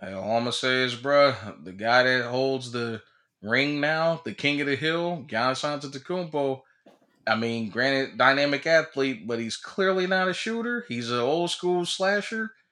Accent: American